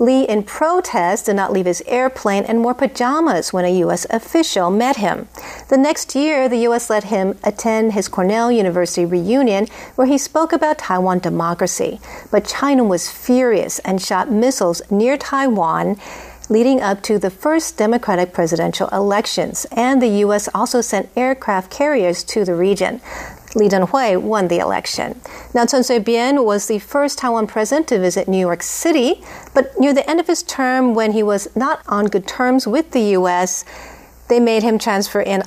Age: 50-69